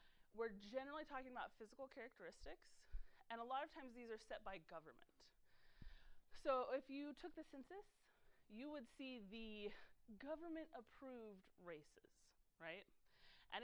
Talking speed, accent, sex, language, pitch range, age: 135 wpm, American, female, English, 205-280 Hz, 30-49